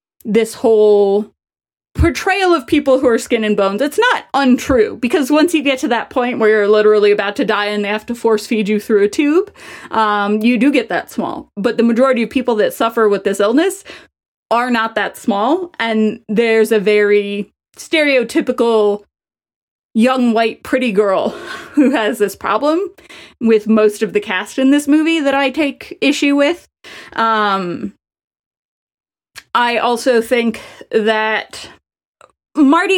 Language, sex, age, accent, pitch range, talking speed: English, female, 20-39, American, 210-275 Hz, 160 wpm